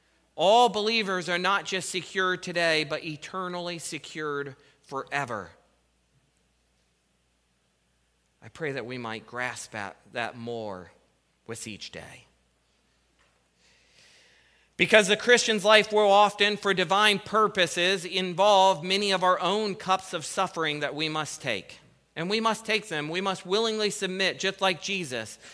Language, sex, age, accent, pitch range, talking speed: English, male, 40-59, American, 135-195 Hz, 130 wpm